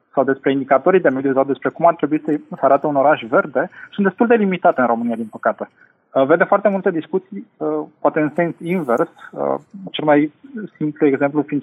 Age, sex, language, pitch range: 20-39, male, Romanian, 140-175 Hz